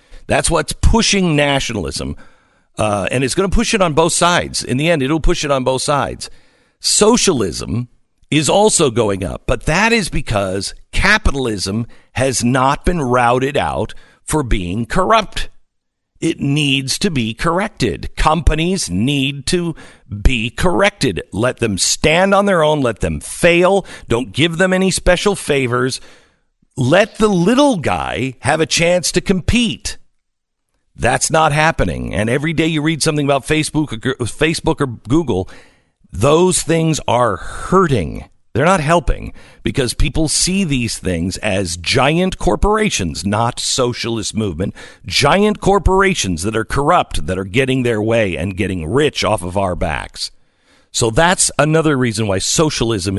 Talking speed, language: 145 wpm, English